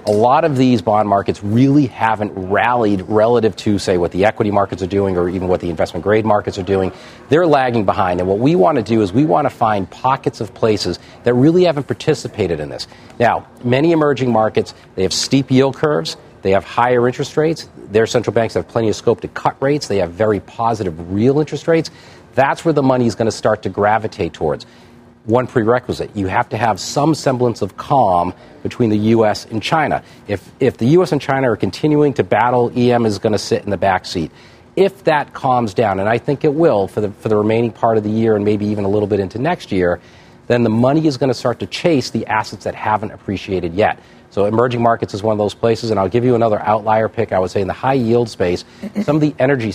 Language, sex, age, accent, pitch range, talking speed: English, male, 40-59, American, 105-130 Hz, 235 wpm